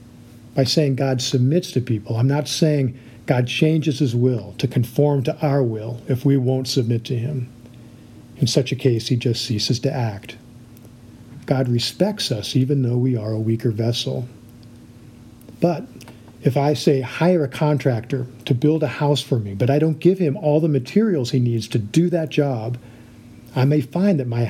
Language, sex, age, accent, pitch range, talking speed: English, male, 50-69, American, 120-145 Hz, 185 wpm